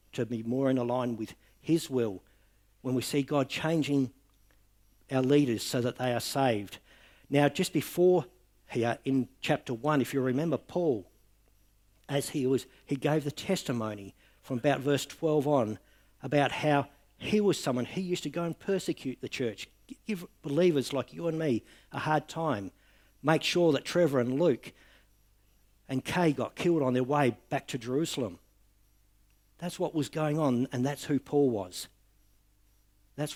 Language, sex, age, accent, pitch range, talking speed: English, male, 60-79, Australian, 100-145 Hz, 165 wpm